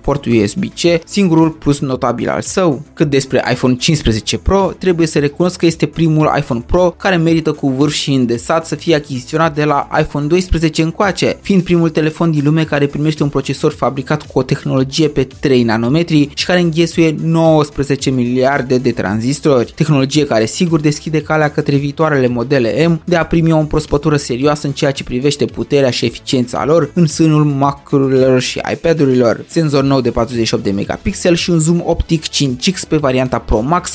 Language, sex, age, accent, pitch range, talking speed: Romanian, male, 20-39, native, 130-165 Hz, 175 wpm